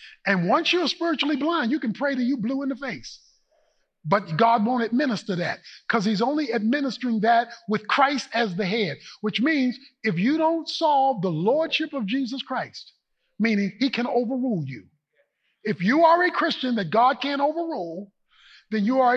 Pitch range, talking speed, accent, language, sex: 210-285 Hz, 180 wpm, American, English, male